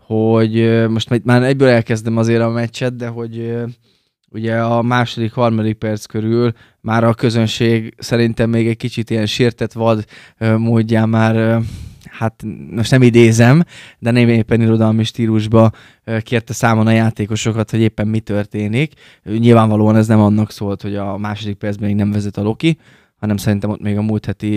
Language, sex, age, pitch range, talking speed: Hungarian, male, 20-39, 105-120 Hz, 160 wpm